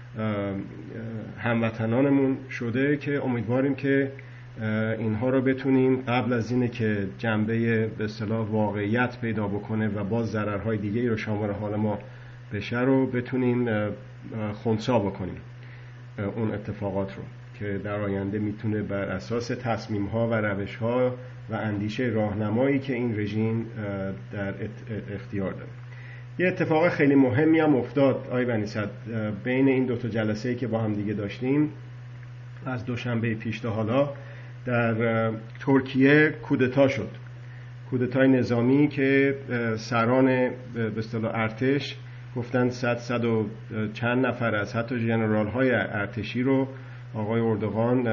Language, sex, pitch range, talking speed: Persian, male, 110-125 Hz, 125 wpm